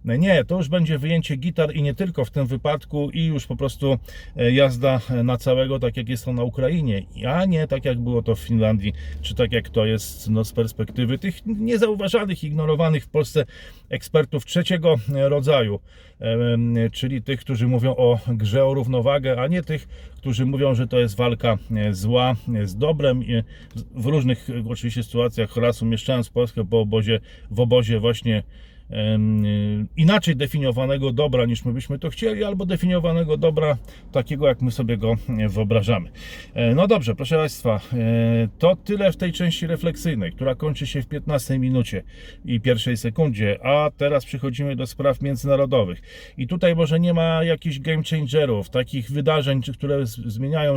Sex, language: male, Polish